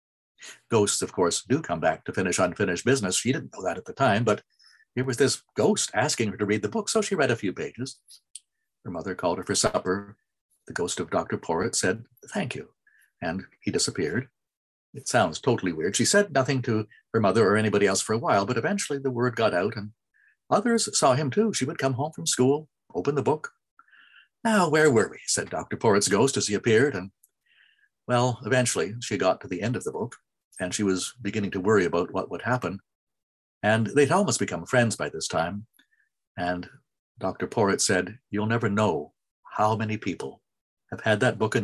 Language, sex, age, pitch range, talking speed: English, male, 60-79, 105-140 Hz, 205 wpm